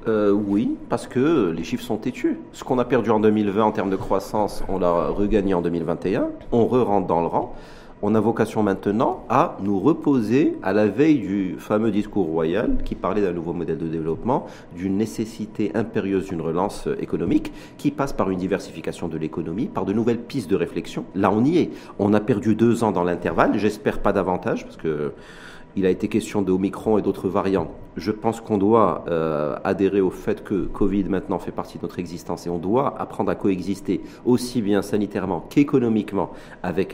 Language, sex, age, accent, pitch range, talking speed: French, male, 40-59, French, 95-115 Hz, 195 wpm